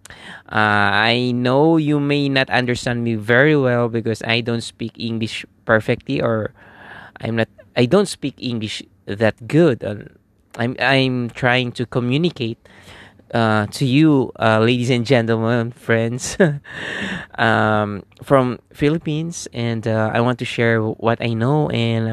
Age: 20-39